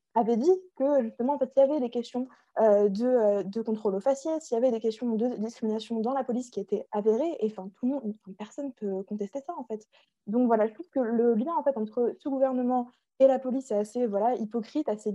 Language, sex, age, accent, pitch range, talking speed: French, female, 20-39, French, 205-240 Hz, 255 wpm